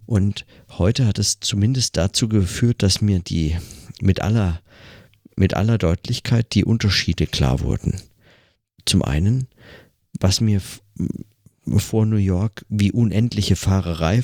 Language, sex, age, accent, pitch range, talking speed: German, male, 50-69, German, 85-110 Hz, 120 wpm